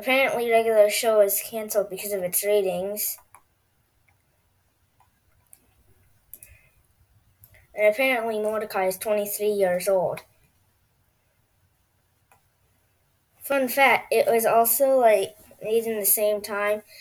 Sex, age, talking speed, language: female, 20-39, 100 wpm, English